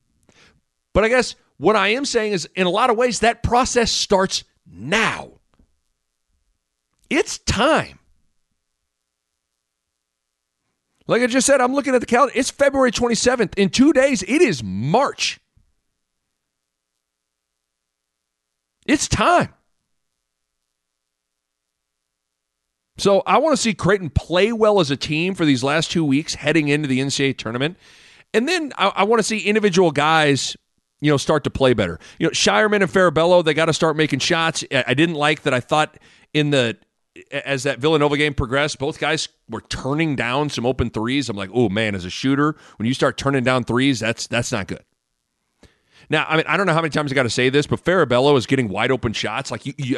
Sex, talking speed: male, 175 wpm